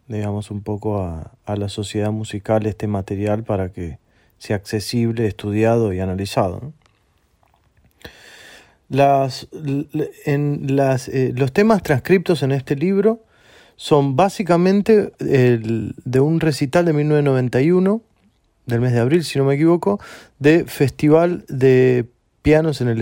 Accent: Argentinian